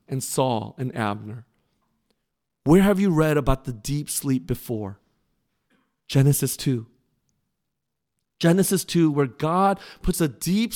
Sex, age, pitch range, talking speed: male, 40-59, 140-190 Hz, 125 wpm